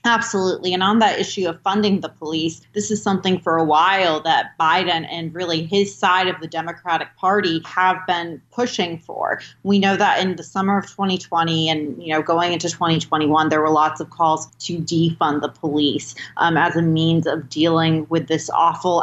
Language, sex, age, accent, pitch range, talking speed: English, female, 30-49, American, 160-190 Hz, 190 wpm